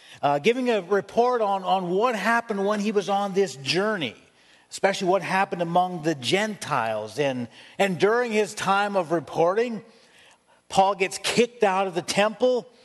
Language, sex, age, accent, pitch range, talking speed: English, male, 50-69, American, 185-230 Hz, 160 wpm